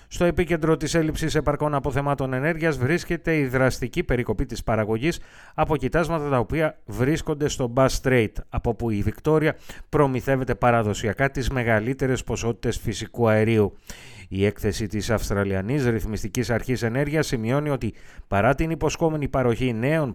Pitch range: 110-145 Hz